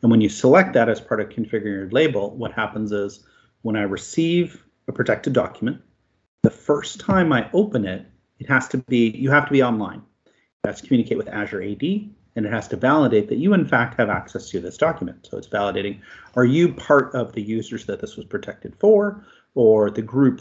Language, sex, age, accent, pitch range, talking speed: English, male, 30-49, American, 110-145 Hz, 210 wpm